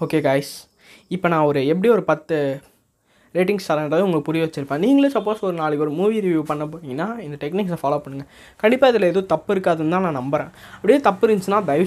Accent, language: native, Tamil